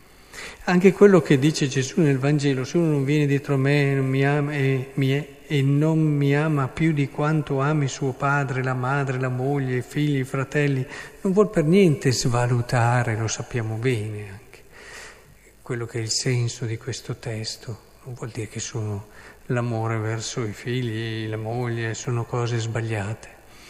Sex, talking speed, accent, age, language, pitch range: male, 175 wpm, native, 50-69, Italian, 125-165 Hz